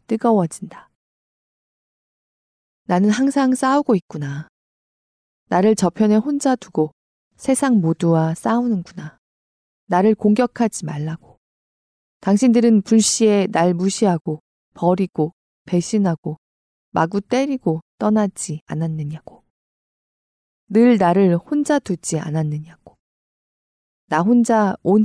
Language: Korean